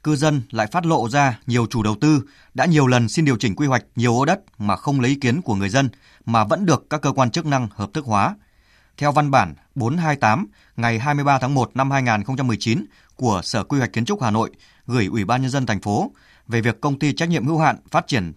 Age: 20-39